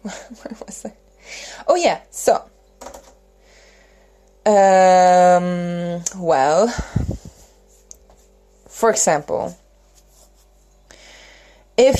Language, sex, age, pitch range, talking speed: English, female, 20-39, 180-255 Hz, 55 wpm